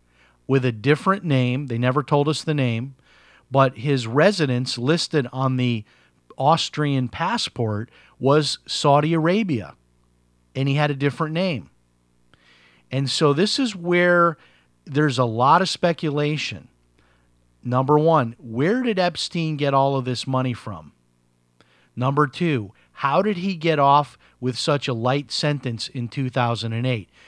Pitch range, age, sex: 110-145 Hz, 40-59, male